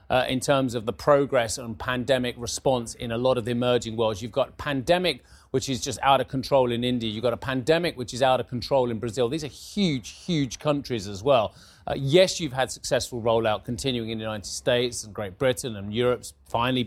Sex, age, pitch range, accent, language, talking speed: male, 30-49, 115-140 Hz, British, English, 220 wpm